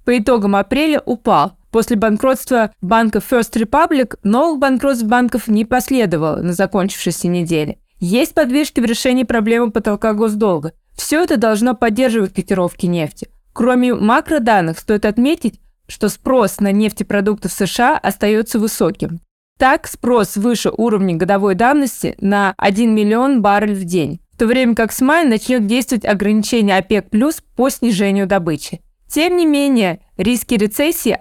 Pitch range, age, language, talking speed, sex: 200-250 Hz, 20-39, Russian, 140 wpm, female